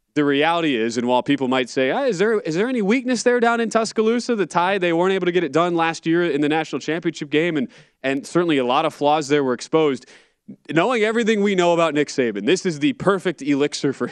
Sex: male